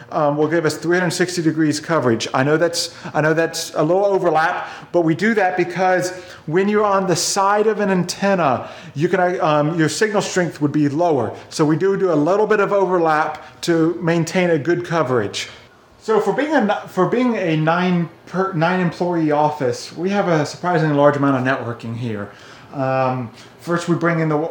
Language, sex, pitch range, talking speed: English, male, 140-180 Hz, 195 wpm